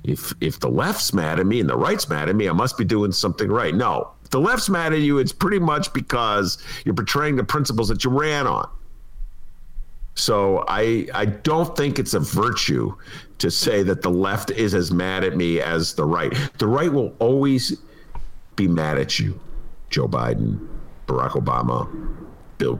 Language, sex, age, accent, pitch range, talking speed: English, male, 50-69, American, 100-155 Hz, 190 wpm